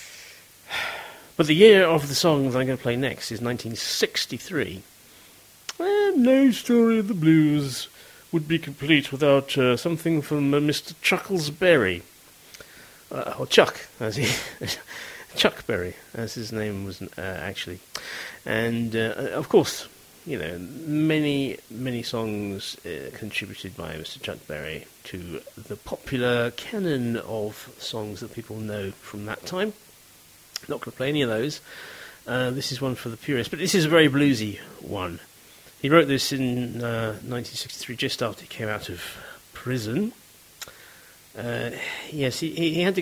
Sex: male